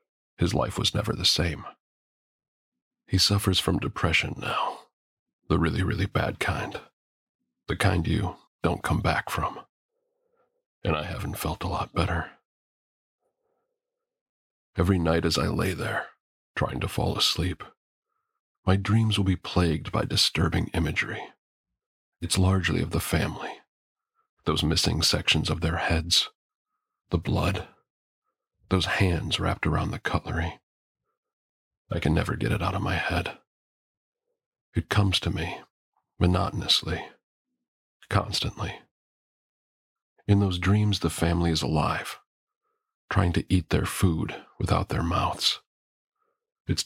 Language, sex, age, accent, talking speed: English, male, 40-59, American, 125 wpm